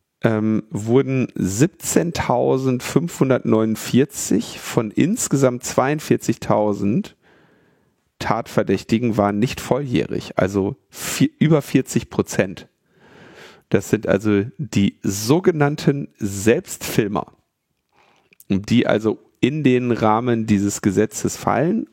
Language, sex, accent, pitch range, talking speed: German, male, German, 95-125 Hz, 75 wpm